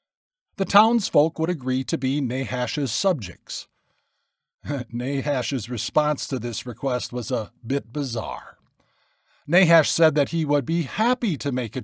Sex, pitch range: male, 125-175 Hz